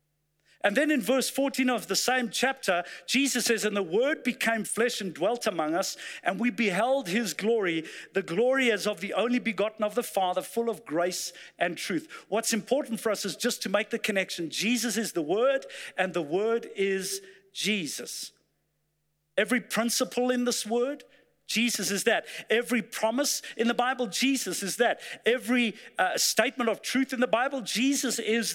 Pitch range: 195-250 Hz